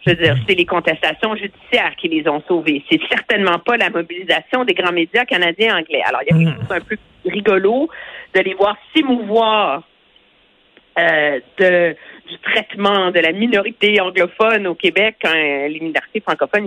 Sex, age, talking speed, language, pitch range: female, 50-69, 175 wpm, French, 170-240 Hz